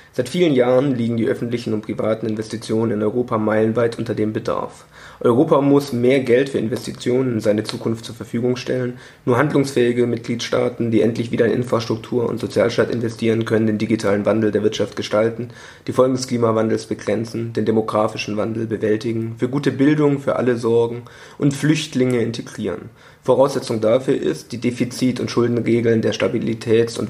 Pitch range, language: 110-125 Hz, German